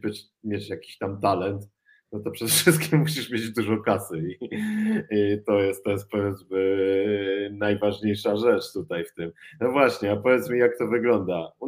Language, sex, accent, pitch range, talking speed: Polish, male, native, 95-125 Hz, 165 wpm